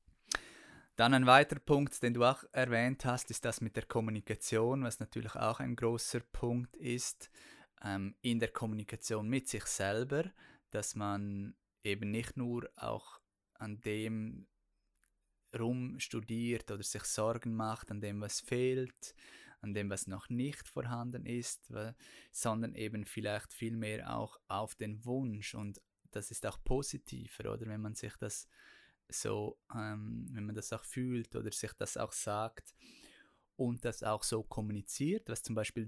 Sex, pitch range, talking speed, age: male, 105-120 Hz, 150 wpm, 20-39